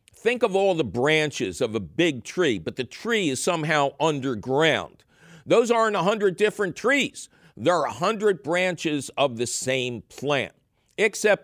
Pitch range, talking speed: 135-195 Hz, 150 wpm